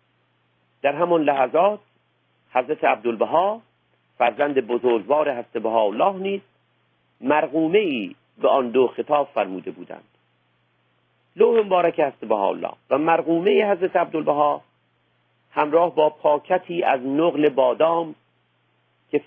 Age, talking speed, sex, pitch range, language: 50-69, 105 wpm, male, 120-165 Hz, Persian